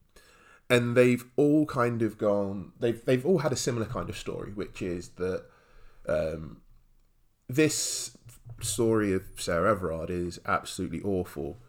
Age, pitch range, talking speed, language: 20-39, 100-125 Hz, 140 wpm, English